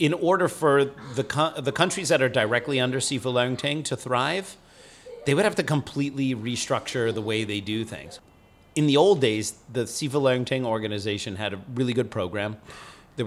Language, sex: English, male